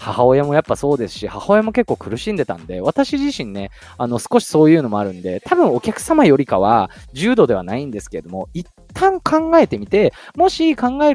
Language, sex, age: Japanese, male, 20-39